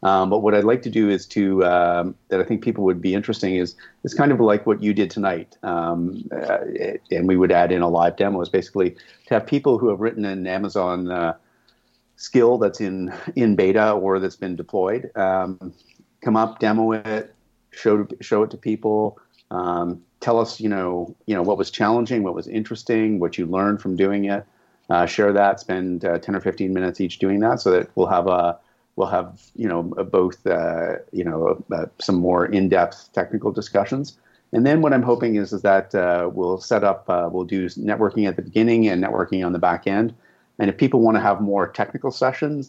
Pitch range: 90-110 Hz